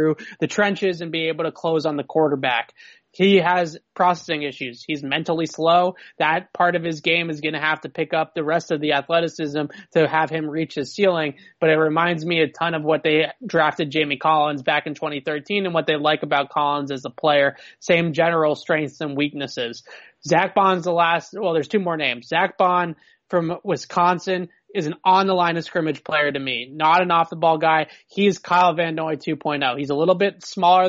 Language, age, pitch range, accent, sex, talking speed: English, 20-39, 155-175 Hz, American, male, 210 wpm